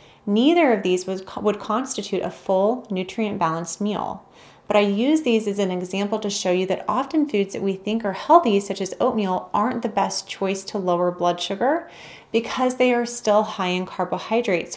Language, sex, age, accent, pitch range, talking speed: English, female, 30-49, American, 185-220 Hz, 190 wpm